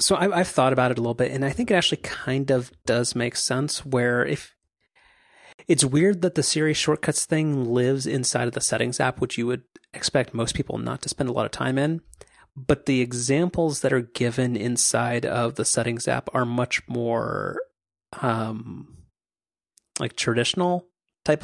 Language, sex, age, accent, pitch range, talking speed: English, male, 30-49, American, 115-135 Hz, 180 wpm